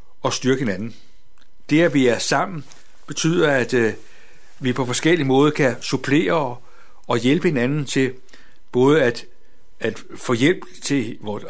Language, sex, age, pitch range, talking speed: Danish, male, 60-79, 125-155 Hz, 130 wpm